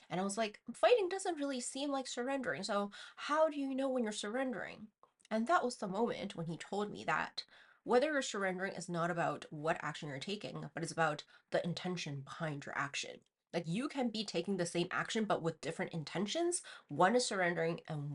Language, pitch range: English, 165-225 Hz